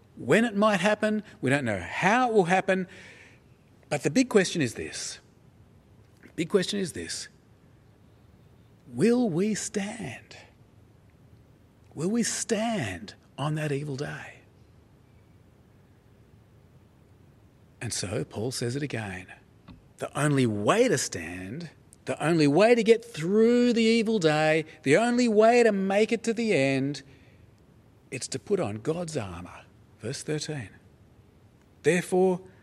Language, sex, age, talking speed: English, male, 40-59, 130 wpm